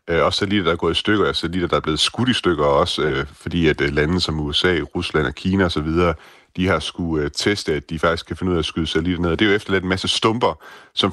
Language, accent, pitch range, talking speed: Danish, native, 80-95 Hz, 260 wpm